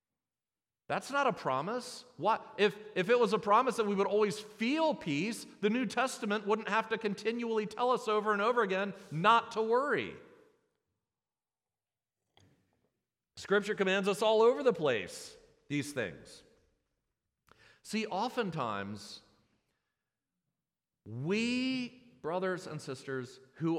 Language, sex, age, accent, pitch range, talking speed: English, male, 40-59, American, 150-230 Hz, 125 wpm